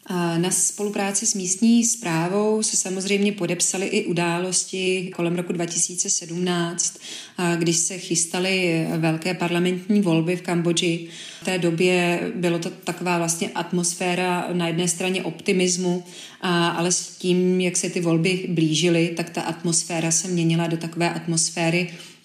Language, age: Czech, 30-49